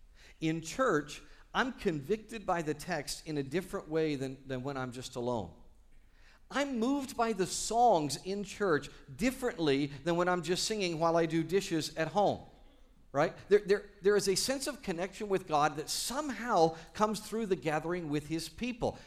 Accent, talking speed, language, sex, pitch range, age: American, 175 wpm, English, male, 110-175 Hz, 50-69